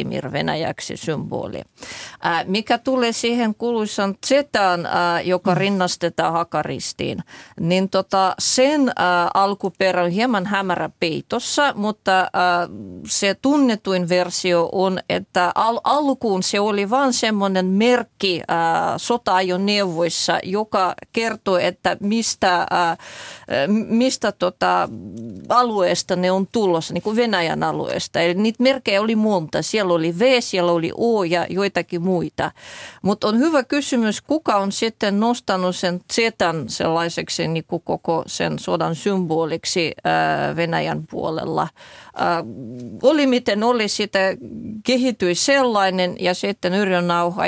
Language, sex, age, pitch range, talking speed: Finnish, female, 30-49, 175-220 Hz, 115 wpm